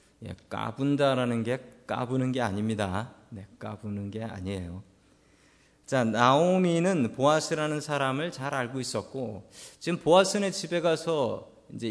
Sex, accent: male, native